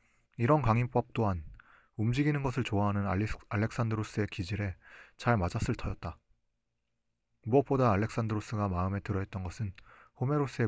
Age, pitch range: 30-49, 100-125 Hz